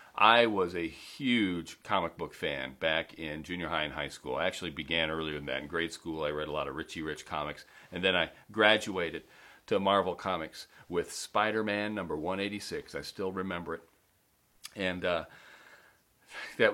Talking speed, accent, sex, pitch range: 175 wpm, American, male, 85-110 Hz